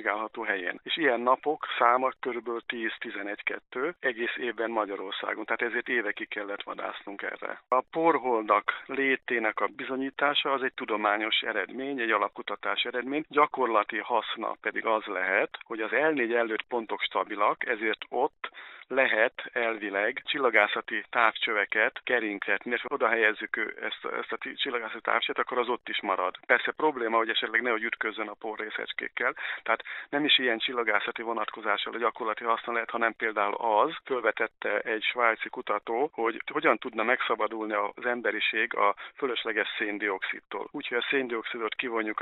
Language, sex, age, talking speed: Hungarian, male, 50-69, 135 wpm